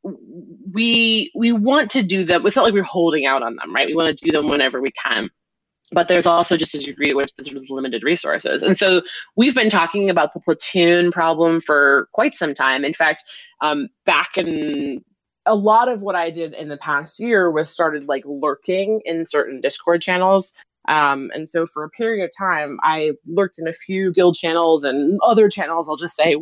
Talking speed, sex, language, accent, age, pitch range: 205 wpm, female, English, American, 20-39, 145-190 Hz